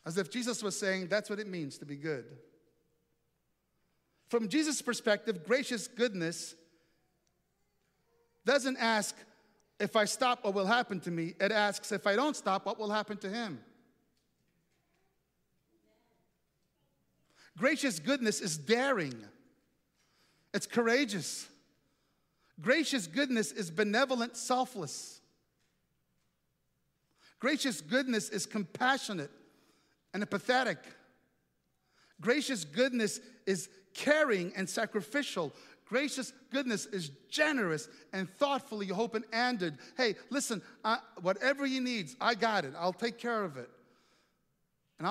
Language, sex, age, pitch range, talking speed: English, male, 50-69, 165-240 Hz, 115 wpm